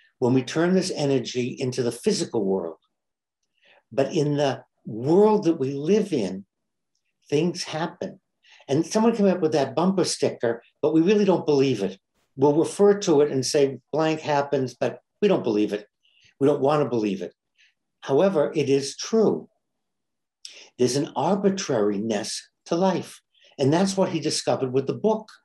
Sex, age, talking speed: male, 60-79, 160 wpm